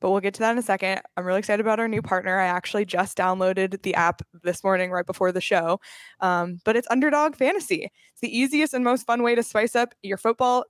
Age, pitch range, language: 20-39, 185-235 Hz, English